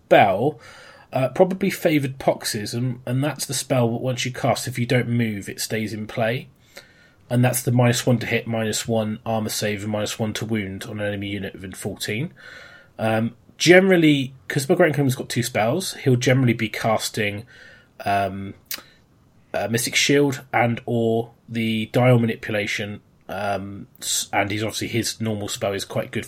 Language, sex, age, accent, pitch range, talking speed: English, male, 20-39, British, 105-130 Hz, 175 wpm